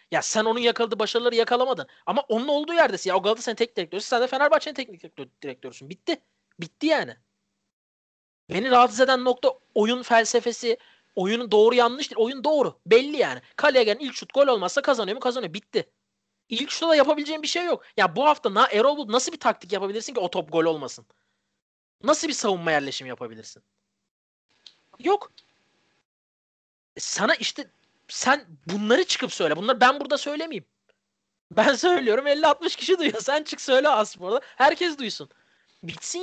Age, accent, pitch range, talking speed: 30-49, native, 195-280 Hz, 160 wpm